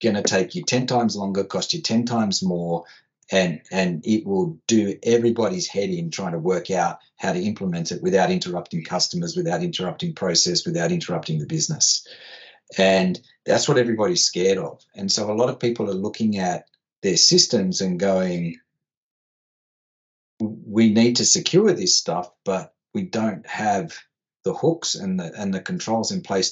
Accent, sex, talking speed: Australian, male, 170 wpm